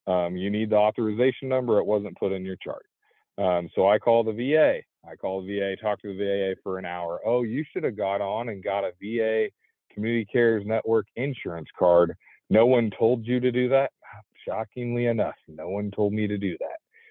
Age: 40-59